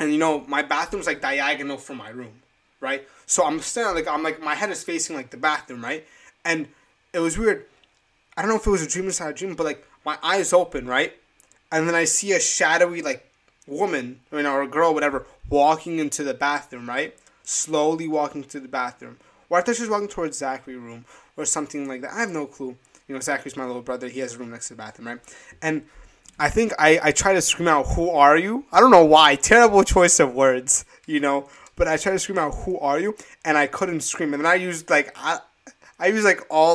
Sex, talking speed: male, 240 wpm